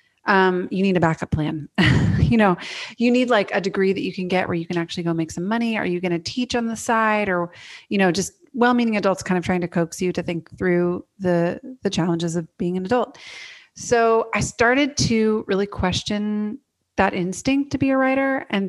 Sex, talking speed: female, 220 wpm